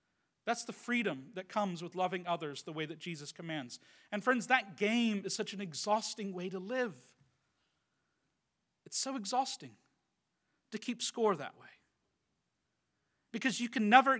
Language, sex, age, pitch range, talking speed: English, male, 40-59, 160-205 Hz, 150 wpm